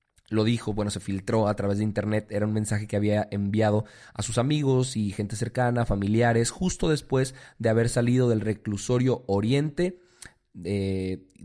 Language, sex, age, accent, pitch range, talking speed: Spanish, male, 20-39, Mexican, 105-120 Hz, 165 wpm